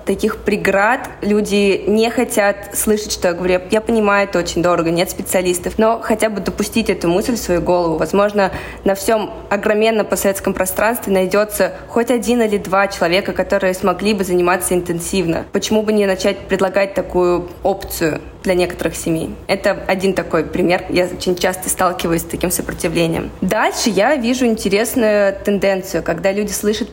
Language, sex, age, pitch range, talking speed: Russian, female, 20-39, 180-210 Hz, 160 wpm